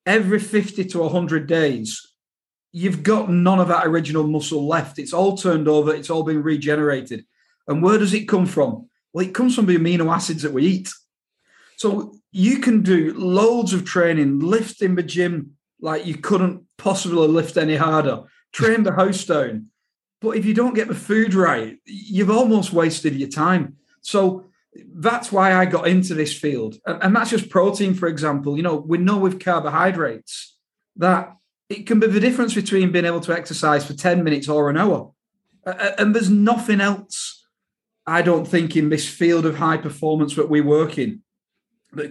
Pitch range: 155-200 Hz